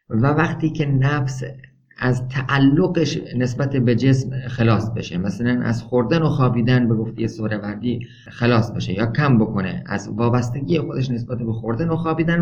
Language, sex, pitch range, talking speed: Persian, male, 115-150 Hz, 155 wpm